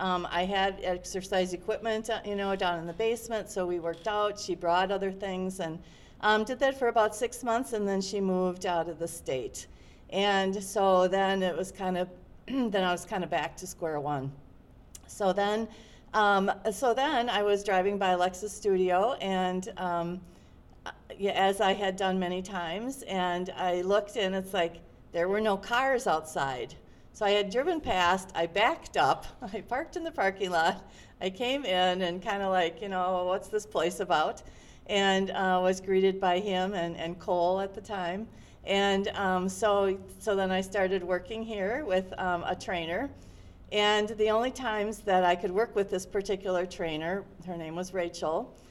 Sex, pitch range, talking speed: female, 180-205 Hz, 185 wpm